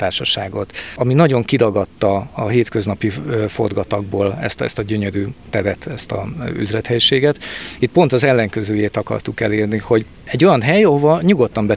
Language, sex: Hungarian, male